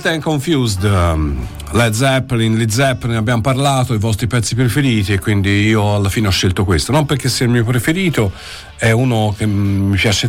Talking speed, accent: 180 wpm, native